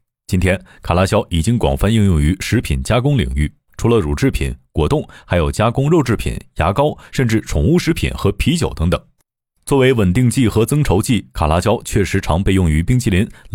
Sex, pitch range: male, 85-120 Hz